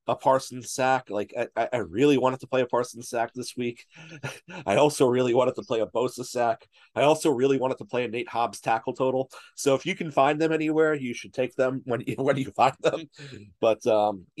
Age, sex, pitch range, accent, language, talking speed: 40-59, male, 105-130 Hz, American, English, 225 wpm